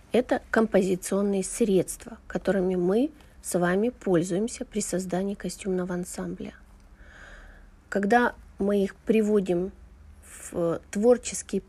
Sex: female